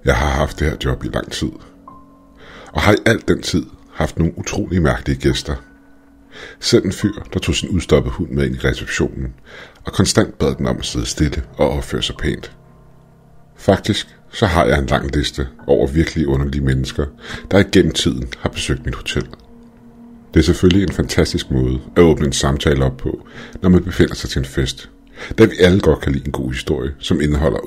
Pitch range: 70-100 Hz